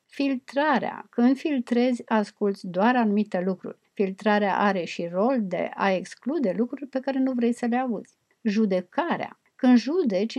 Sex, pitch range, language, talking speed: female, 200-255 Hz, Romanian, 145 wpm